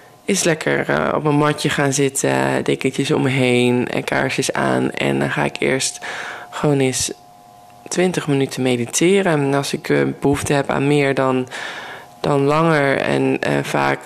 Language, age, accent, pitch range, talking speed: Dutch, 20-39, Dutch, 105-145 Hz, 170 wpm